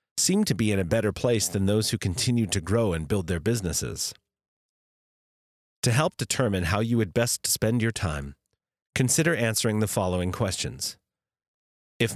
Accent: American